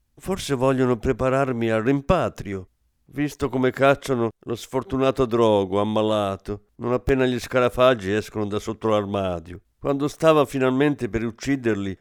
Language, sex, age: Italian, male, 50-69